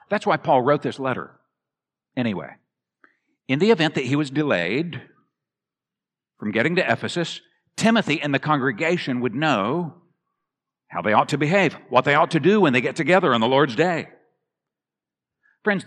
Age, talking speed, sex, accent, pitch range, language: 50-69, 165 wpm, male, American, 140-190 Hz, English